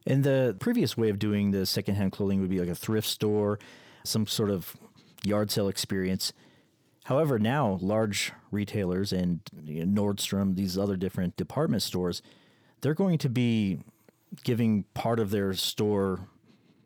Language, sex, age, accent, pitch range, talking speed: English, male, 30-49, American, 95-110 Hz, 145 wpm